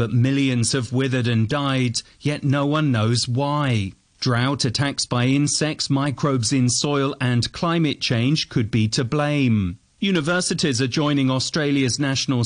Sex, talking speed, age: male, 145 wpm, 40-59